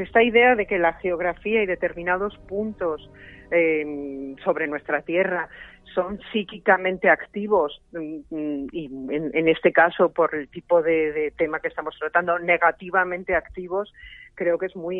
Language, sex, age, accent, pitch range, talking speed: Spanish, female, 40-59, Spanish, 165-195 Hz, 145 wpm